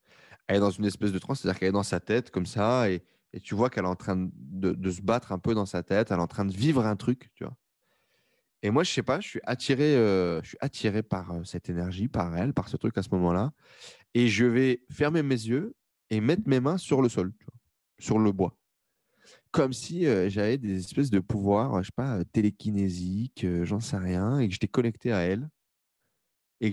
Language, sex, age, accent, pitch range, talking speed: French, male, 20-39, French, 95-125 Hz, 240 wpm